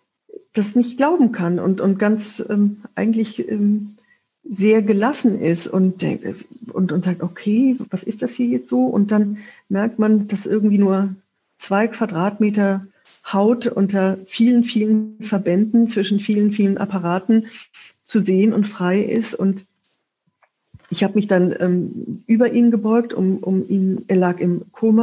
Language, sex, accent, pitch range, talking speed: German, female, German, 190-225 Hz, 150 wpm